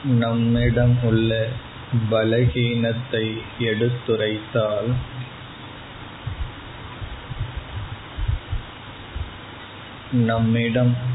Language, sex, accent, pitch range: Tamil, male, native, 105-120 Hz